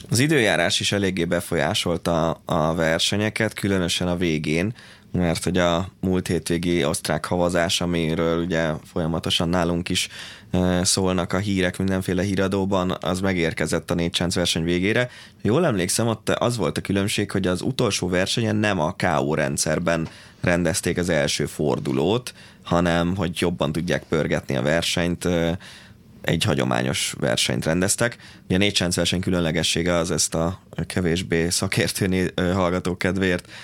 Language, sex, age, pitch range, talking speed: Hungarian, male, 20-39, 85-95 Hz, 135 wpm